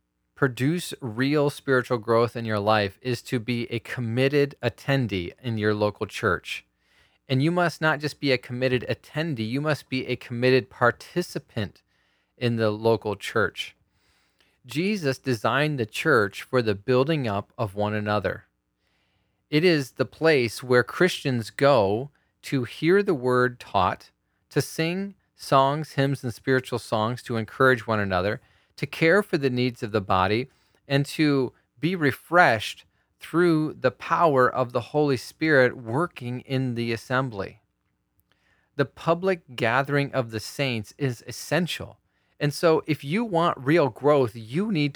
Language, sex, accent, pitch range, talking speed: English, male, American, 110-145 Hz, 145 wpm